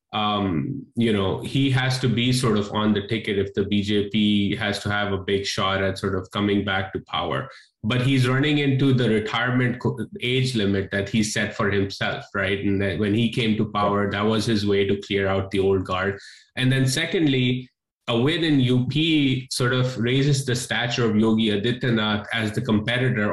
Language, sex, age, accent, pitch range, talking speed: English, male, 20-39, Indian, 105-125 Hz, 195 wpm